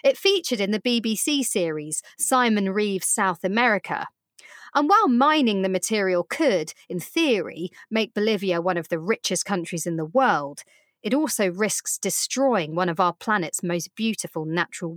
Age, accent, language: 30-49, British, English